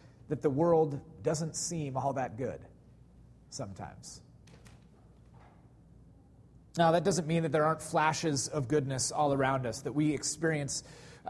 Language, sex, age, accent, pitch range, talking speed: English, male, 30-49, American, 130-155 Hz, 135 wpm